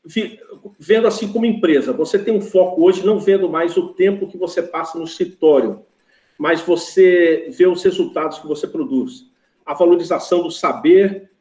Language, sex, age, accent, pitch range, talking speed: Portuguese, male, 50-69, Brazilian, 150-205 Hz, 165 wpm